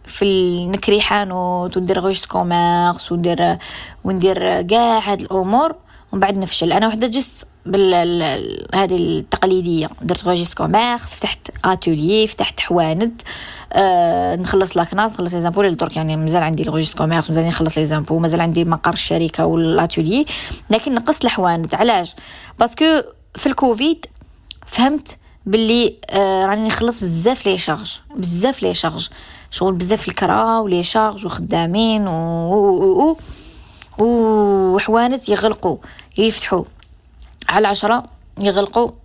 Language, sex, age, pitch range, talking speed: Arabic, female, 20-39, 175-220 Hz, 130 wpm